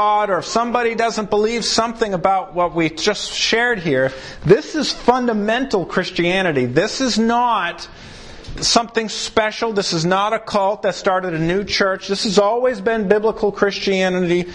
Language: English